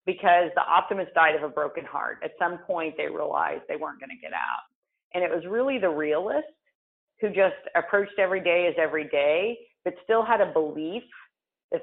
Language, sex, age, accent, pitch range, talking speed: English, female, 40-59, American, 170-235 Hz, 200 wpm